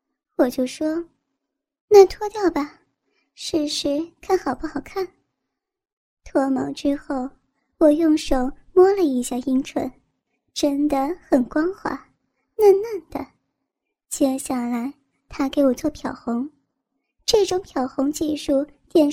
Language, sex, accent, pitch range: Chinese, male, native, 275-335 Hz